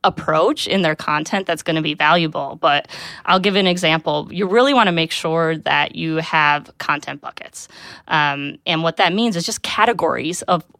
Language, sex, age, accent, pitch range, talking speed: English, female, 20-39, American, 170-220 Hz, 190 wpm